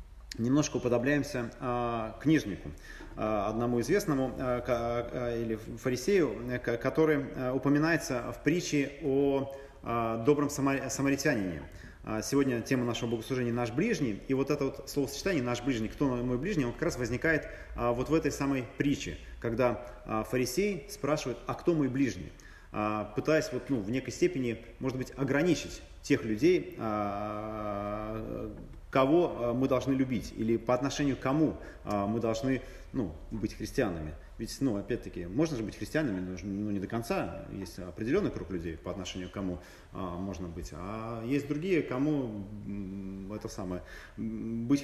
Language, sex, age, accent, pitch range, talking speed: Russian, male, 30-49, native, 105-140 Hz, 150 wpm